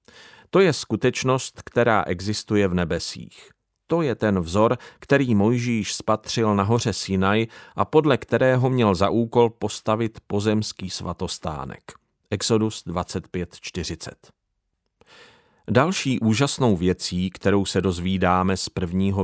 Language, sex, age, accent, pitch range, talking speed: Czech, male, 40-59, native, 95-120 Hz, 115 wpm